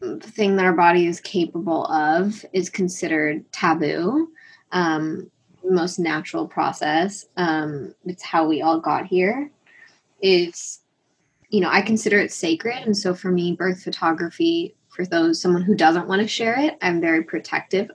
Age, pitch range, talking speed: 20-39, 165-215 Hz, 155 wpm